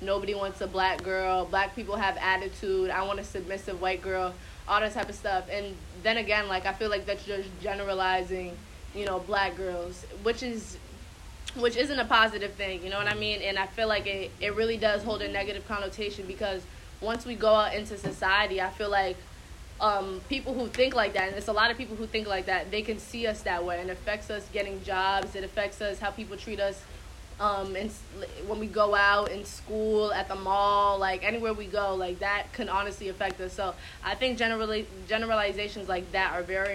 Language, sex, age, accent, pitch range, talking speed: English, female, 20-39, American, 190-215 Hz, 215 wpm